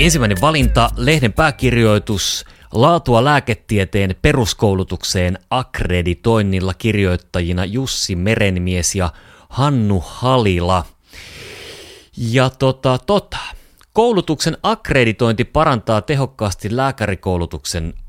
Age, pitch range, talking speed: 30-49, 90-125 Hz, 75 wpm